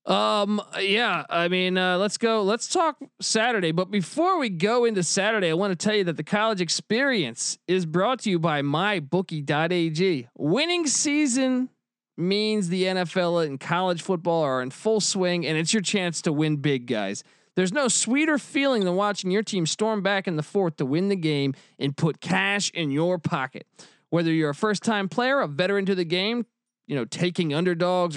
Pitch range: 155-210 Hz